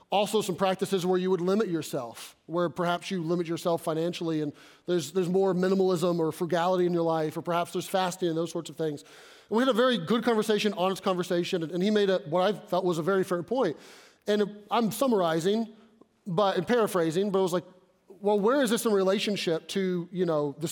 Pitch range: 170-200 Hz